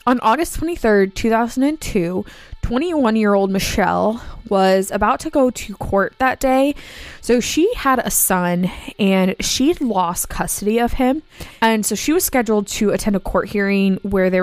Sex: female